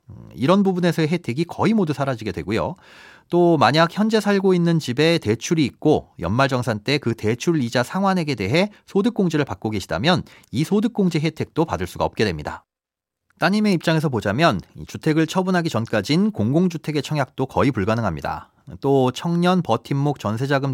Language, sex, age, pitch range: Korean, male, 40-59, 115-175 Hz